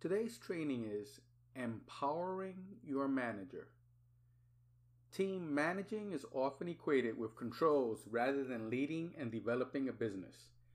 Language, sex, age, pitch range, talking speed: English, male, 30-49, 120-165 Hz, 110 wpm